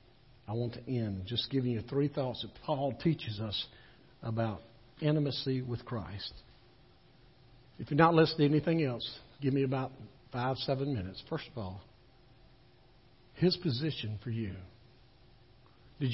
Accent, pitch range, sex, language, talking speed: American, 120-155 Hz, male, English, 140 wpm